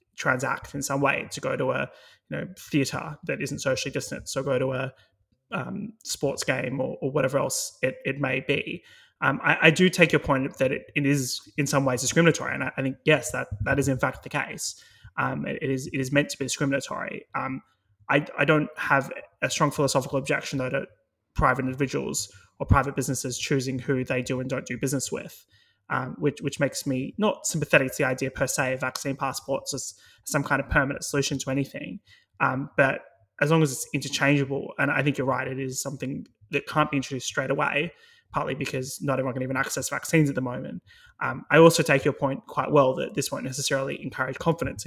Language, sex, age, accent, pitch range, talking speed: English, male, 20-39, Australian, 130-145 Hz, 215 wpm